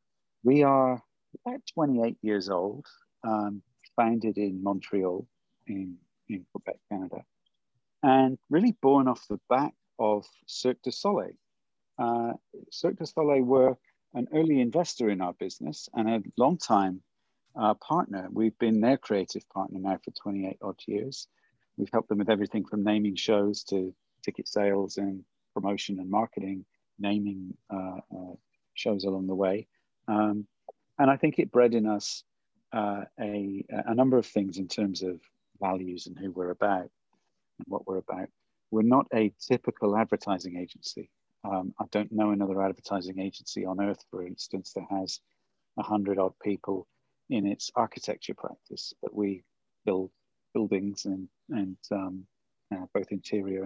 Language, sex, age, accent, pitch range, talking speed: English, male, 40-59, British, 95-115 Hz, 150 wpm